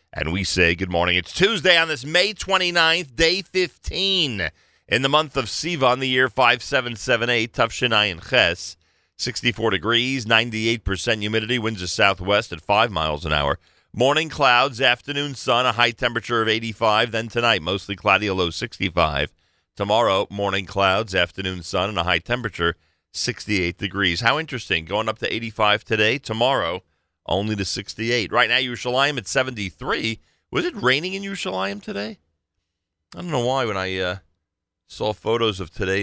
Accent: American